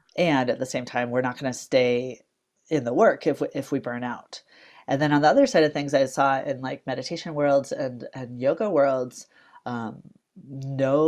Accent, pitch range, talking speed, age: American, 125-140 Hz, 205 wpm, 30-49